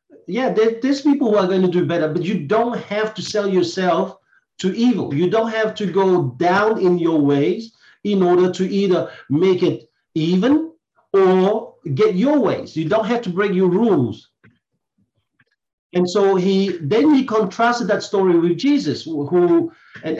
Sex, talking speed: male, 170 wpm